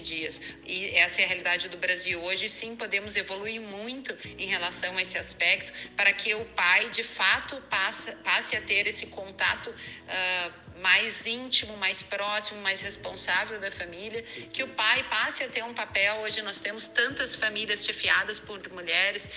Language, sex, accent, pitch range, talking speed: Portuguese, female, Brazilian, 180-210 Hz, 170 wpm